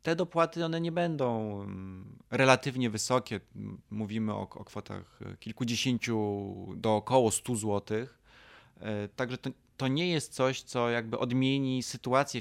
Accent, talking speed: native, 125 wpm